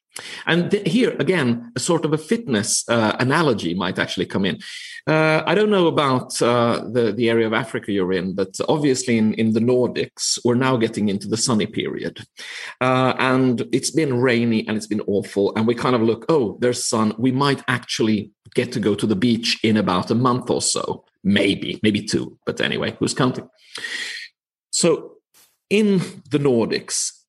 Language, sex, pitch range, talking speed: English, male, 110-155 Hz, 185 wpm